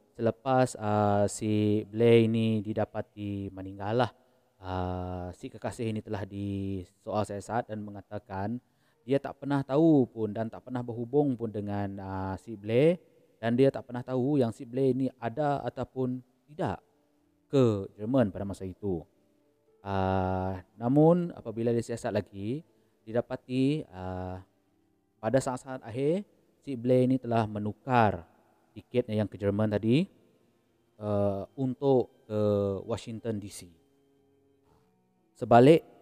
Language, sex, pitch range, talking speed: Malay, male, 100-125 Hz, 125 wpm